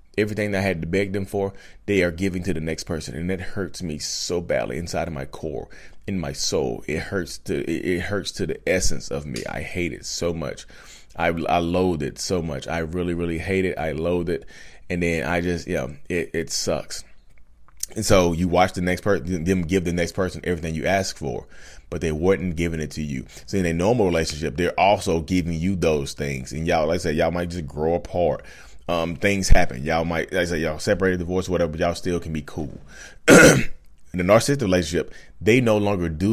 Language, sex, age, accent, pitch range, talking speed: English, male, 30-49, American, 80-95 Hz, 225 wpm